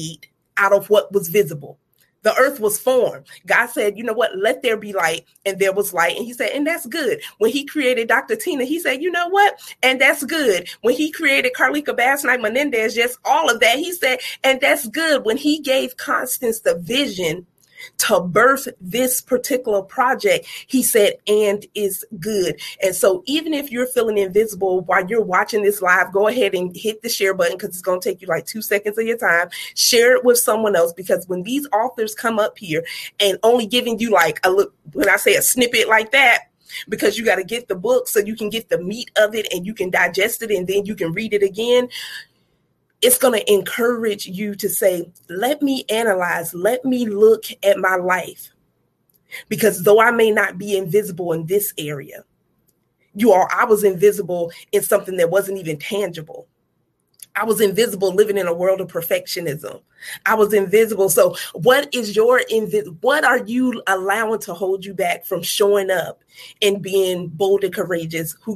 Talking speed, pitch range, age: 200 wpm, 190-245 Hz, 30-49